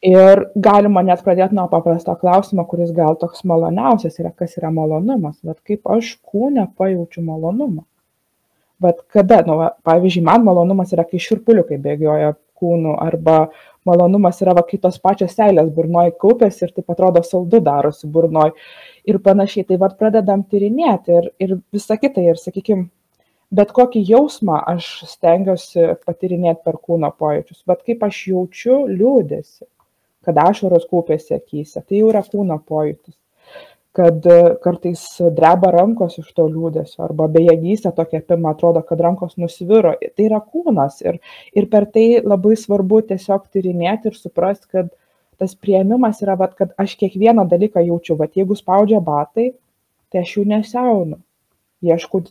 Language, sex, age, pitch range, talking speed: English, female, 20-39, 170-205 Hz, 145 wpm